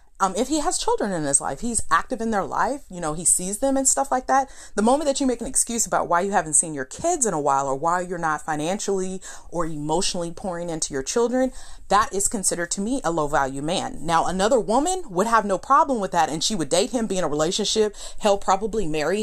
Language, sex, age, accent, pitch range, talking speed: English, female, 30-49, American, 170-235 Hz, 250 wpm